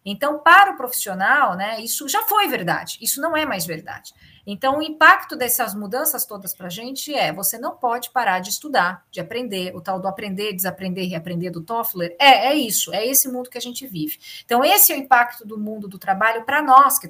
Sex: female